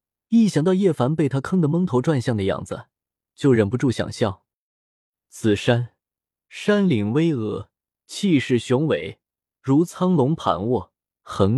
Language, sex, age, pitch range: Chinese, male, 20-39, 110-160 Hz